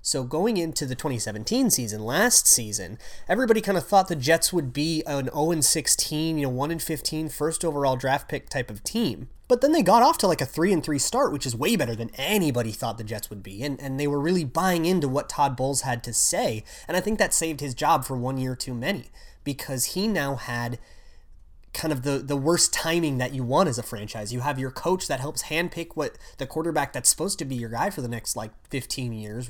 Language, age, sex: English, 30-49, male